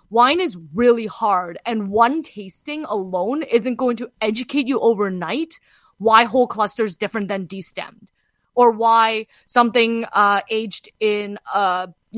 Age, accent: 20-39, American